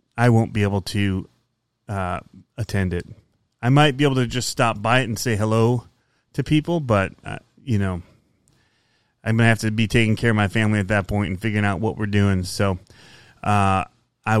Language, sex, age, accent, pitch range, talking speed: English, male, 30-49, American, 105-135 Hz, 200 wpm